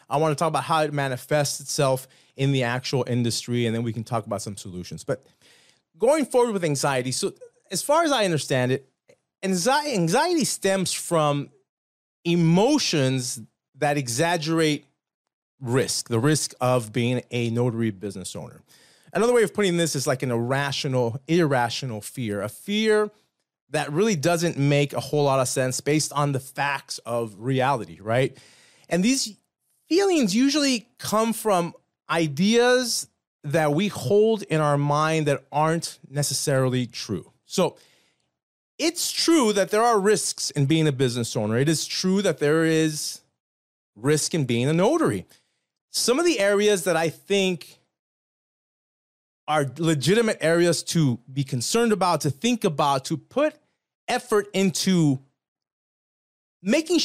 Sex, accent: male, American